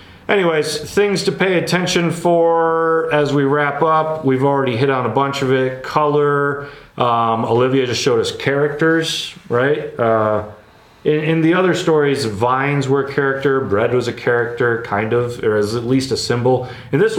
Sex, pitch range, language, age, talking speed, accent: male, 95-135 Hz, English, 30-49, 175 wpm, American